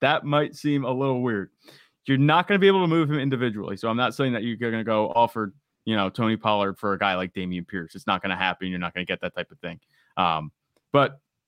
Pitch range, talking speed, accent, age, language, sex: 115-145 Hz, 270 wpm, American, 20-39, English, male